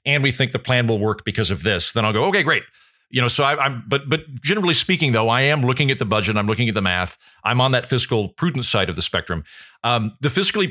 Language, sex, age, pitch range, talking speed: English, male, 40-59, 105-140 Hz, 270 wpm